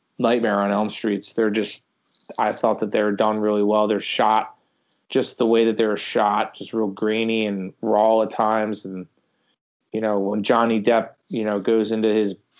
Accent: American